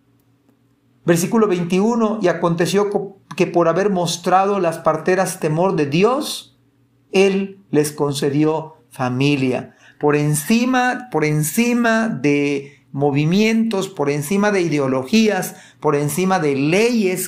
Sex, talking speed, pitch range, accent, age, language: male, 105 wpm, 140-190 Hz, Mexican, 40-59, Spanish